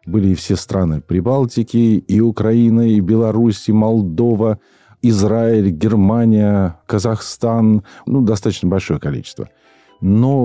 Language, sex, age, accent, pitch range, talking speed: Russian, male, 40-59, native, 90-110 Hz, 100 wpm